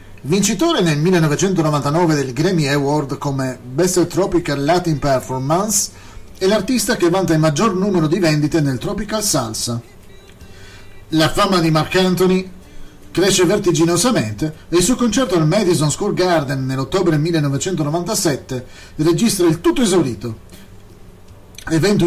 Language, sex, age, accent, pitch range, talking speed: Italian, male, 30-49, native, 130-185 Hz, 120 wpm